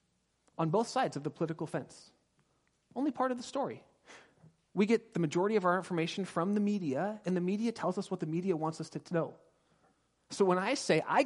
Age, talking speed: 30-49, 210 wpm